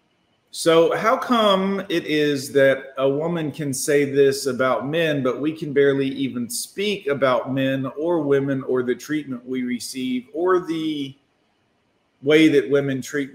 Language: English